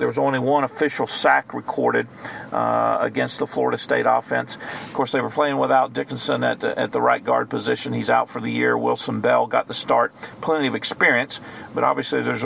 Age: 50-69